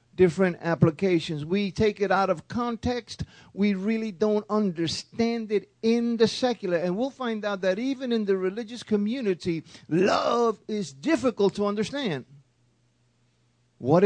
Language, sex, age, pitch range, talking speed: English, male, 40-59, 160-220 Hz, 135 wpm